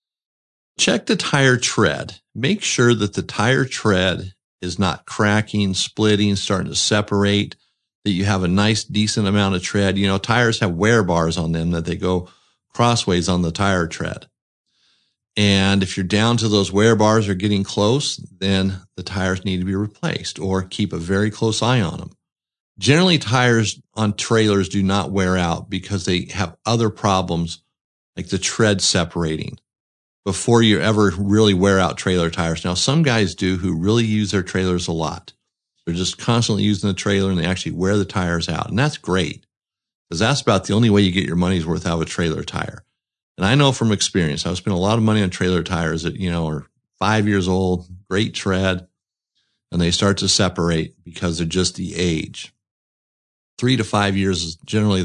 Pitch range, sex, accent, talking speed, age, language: 90-105 Hz, male, American, 190 wpm, 50-69, English